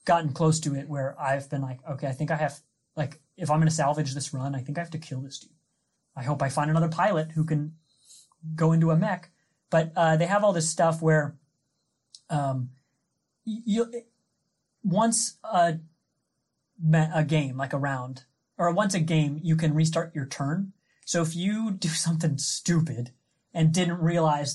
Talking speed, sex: 185 wpm, male